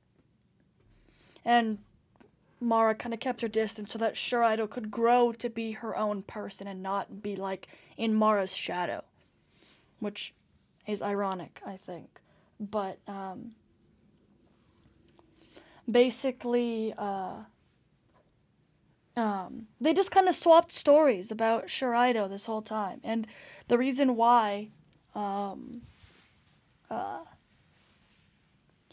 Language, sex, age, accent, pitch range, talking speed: English, female, 10-29, American, 210-250 Hz, 105 wpm